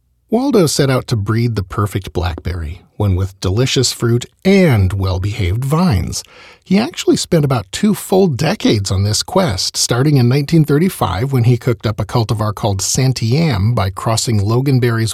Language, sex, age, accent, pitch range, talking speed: English, male, 40-59, American, 100-145 Hz, 155 wpm